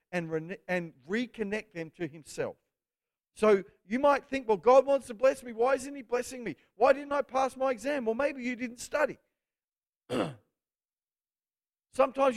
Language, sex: English, male